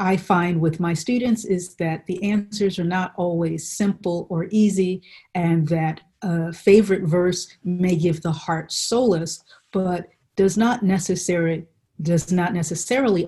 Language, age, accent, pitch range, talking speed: English, 40-59, American, 165-200 Hz, 135 wpm